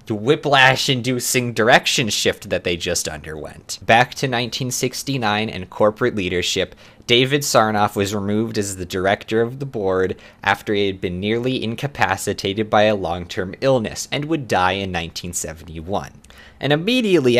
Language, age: English, 20-39